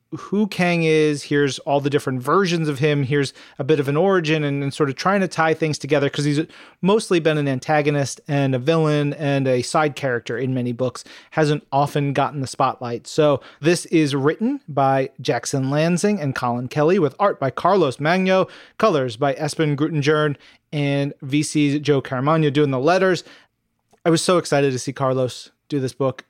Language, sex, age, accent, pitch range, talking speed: English, male, 30-49, American, 140-160 Hz, 185 wpm